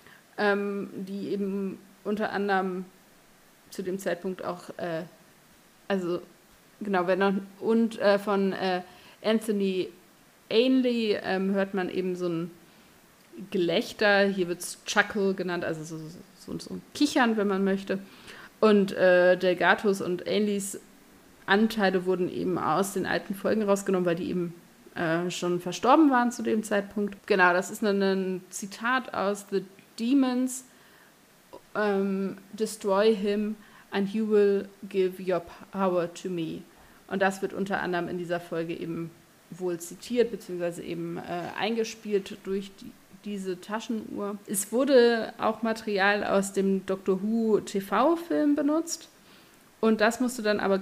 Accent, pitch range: German, 185-215 Hz